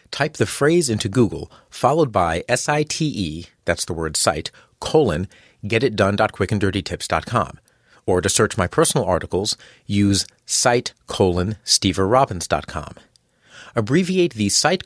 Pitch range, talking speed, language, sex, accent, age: 100-155 Hz, 110 wpm, English, male, American, 40-59